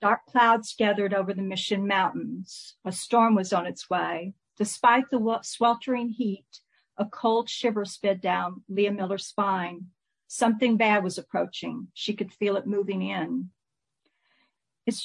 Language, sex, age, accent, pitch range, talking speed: English, female, 50-69, American, 195-230 Hz, 145 wpm